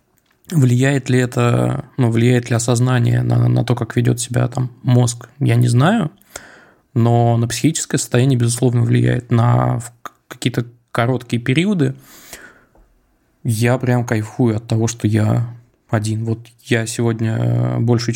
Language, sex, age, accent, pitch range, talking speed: Russian, male, 20-39, native, 115-125 Hz, 130 wpm